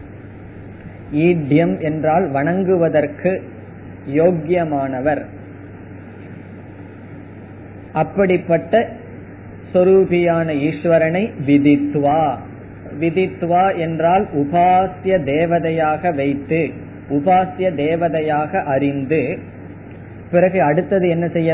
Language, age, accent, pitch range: Tamil, 20-39, native, 105-175 Hz